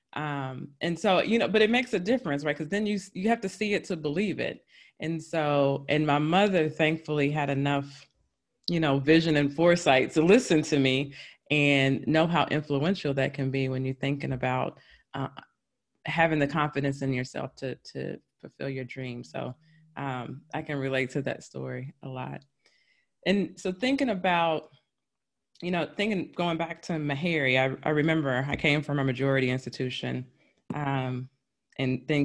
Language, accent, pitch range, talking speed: English, American, 135-175 Hz, 175 wpm